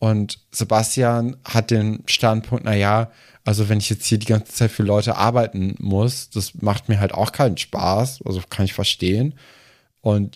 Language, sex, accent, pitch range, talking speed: German, male, German, 105-130 Hz, 180 wpm